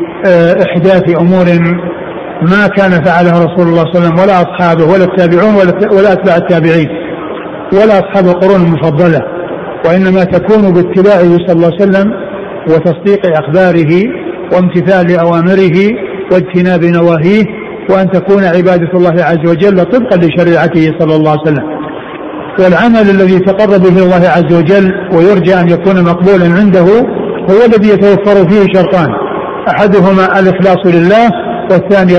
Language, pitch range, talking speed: Arabic, 175-200 Hz, 125 wpm